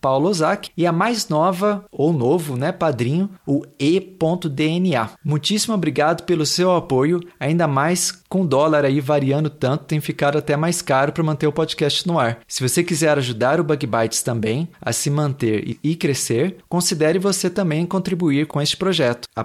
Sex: male